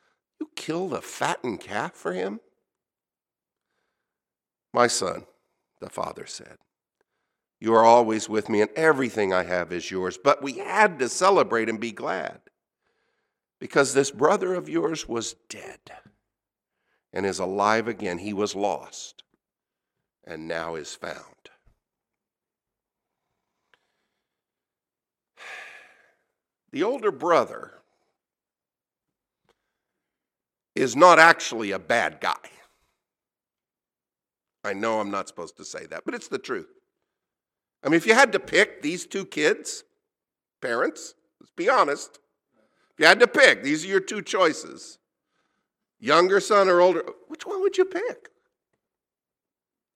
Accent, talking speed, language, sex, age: American, 125 wpm, English, male, 50-69